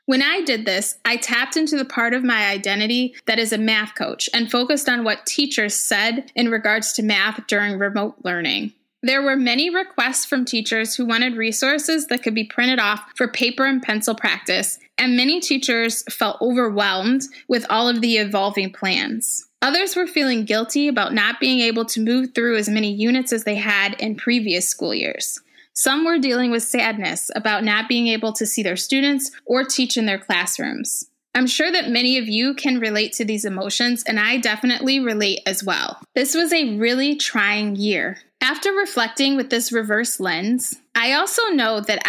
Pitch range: 215-265 Hz